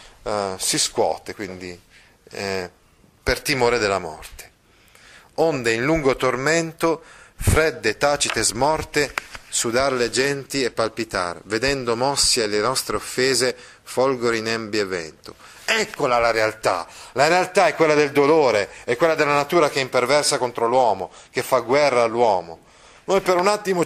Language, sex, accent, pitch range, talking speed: Italian, male, native, 115-145 Hz, 140 wpm